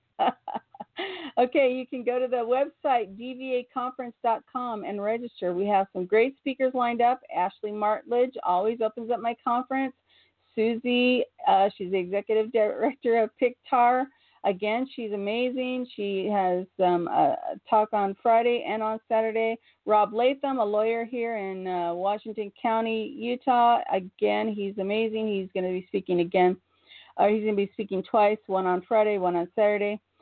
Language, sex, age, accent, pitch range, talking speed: English, female, 40-59, American, 200-250 Hz, 155 wpm